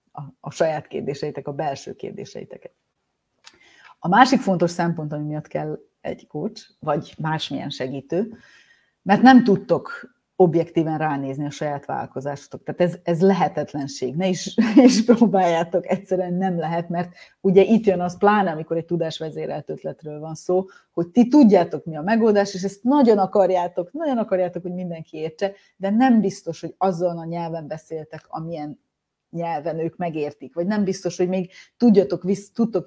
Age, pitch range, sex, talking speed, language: 30-49, 155-195 Hz, female, 155 wpm, Hungarian